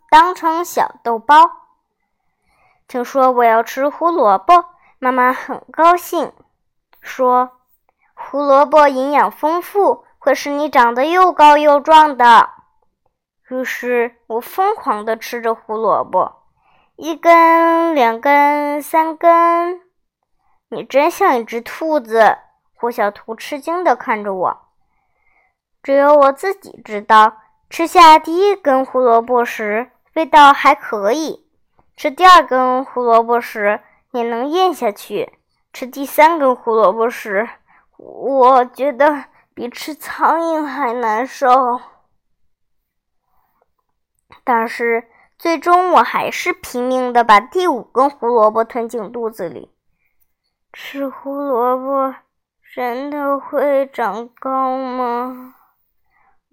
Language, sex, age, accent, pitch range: Chinese, male, 10-29, native, 235-320 Hz